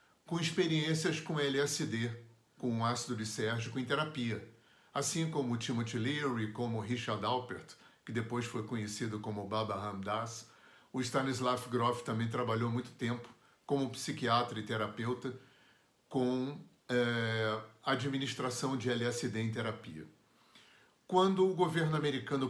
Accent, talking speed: Brazilian, 125 wpm